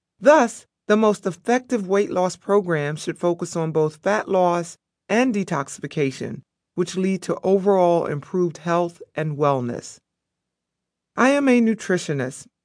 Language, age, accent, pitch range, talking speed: English, 30-49, American, 160-200 Hz, 130 wpm